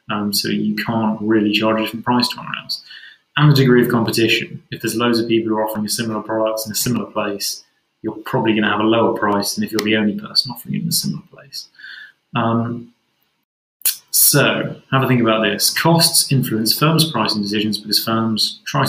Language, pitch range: English, 105-125 Hz